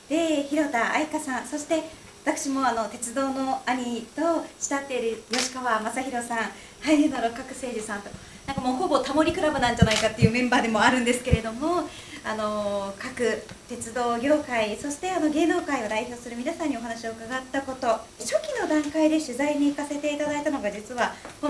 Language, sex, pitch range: Japanese, female, 230-320 Hz